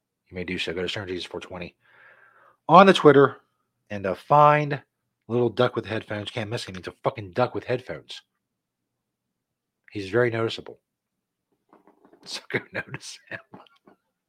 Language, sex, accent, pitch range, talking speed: English, male, American, 105-145 Hz, 135 wpm